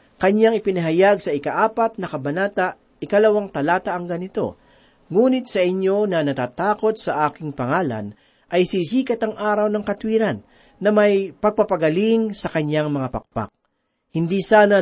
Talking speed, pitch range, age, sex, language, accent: 135 wpm, 160-215 Hz, 40-59, male, Filipino, native